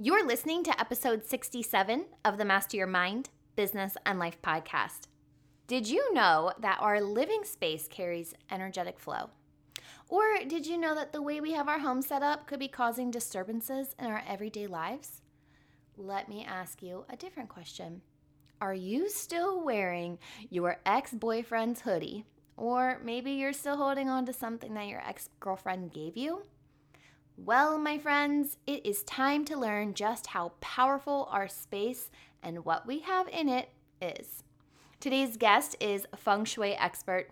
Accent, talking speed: American, 160 wpm